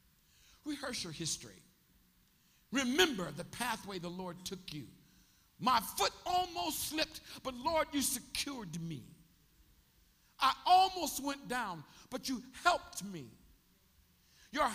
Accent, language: American, English